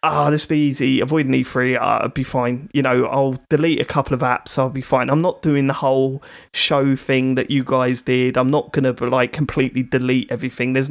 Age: 20-39